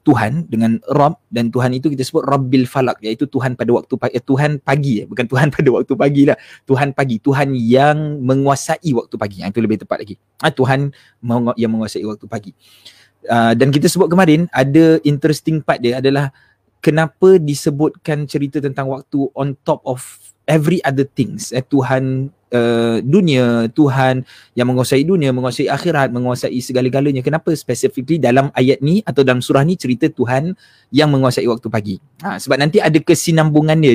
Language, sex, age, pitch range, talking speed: Malay, male, 20-39, 125-150 Hz, 170 wpm